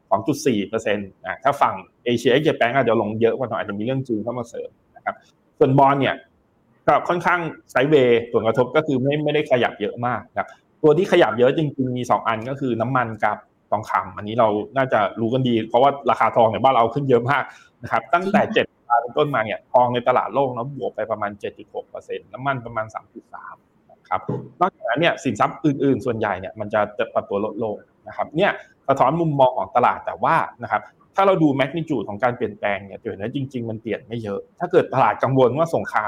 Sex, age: male, 20-39